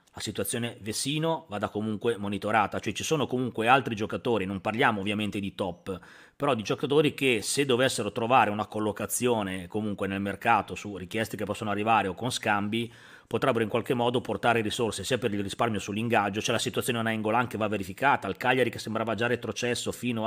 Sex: male